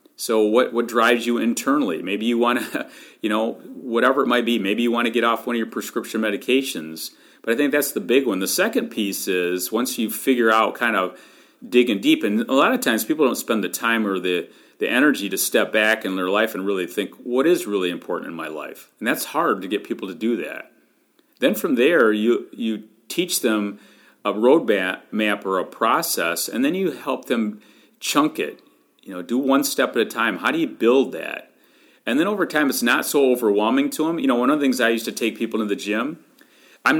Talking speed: 230 wpm